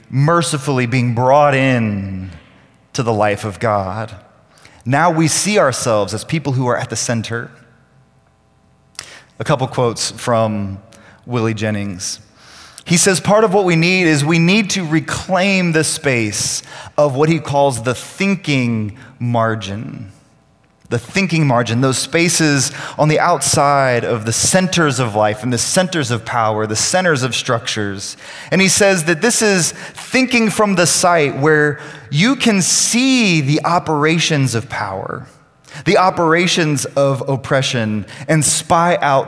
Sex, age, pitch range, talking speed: male, 30-49, 115-160 Hz, 145 wpm